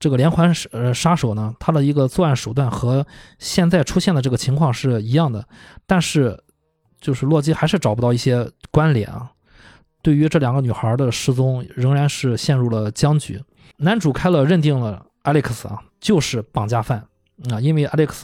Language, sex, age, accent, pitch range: Chinese, male, 20-39, native, 115-155 Hz